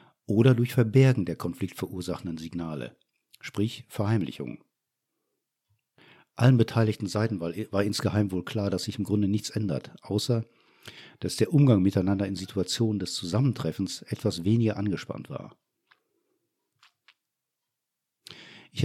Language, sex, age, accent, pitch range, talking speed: German, male, 50-69, German, 95-120 Hz, 110 wpm